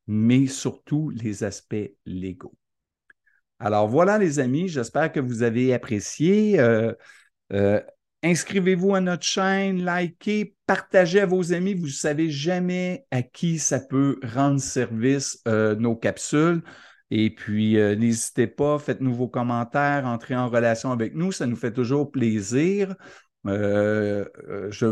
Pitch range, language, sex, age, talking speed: 110-155 Hz, French, male, 50-69, 140 wpm